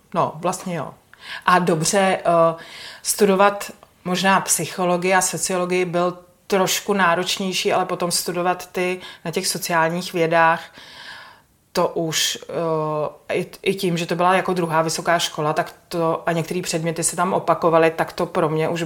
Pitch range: 160-180 Hz